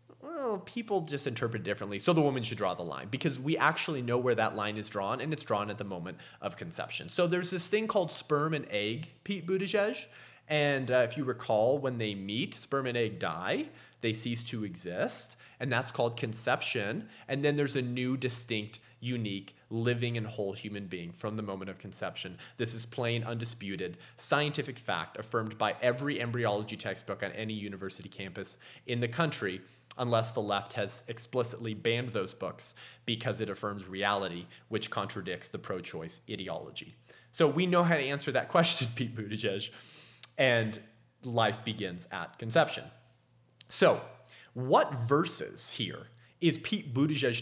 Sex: male